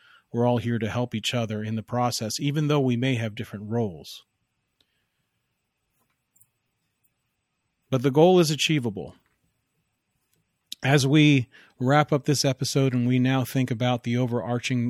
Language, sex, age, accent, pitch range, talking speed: English, male, 40-59, American, 110-135 Hz, 140 wpm